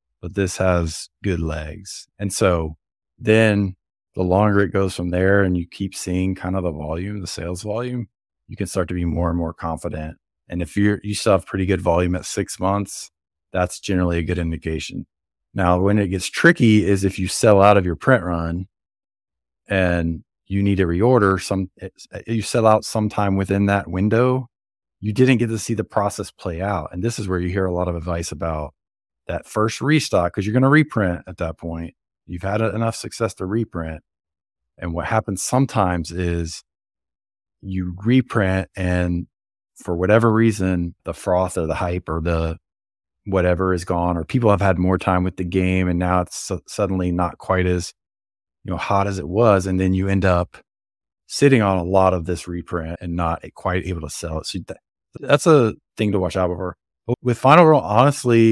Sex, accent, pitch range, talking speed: male, American, 85-105 Hz, 195 wpm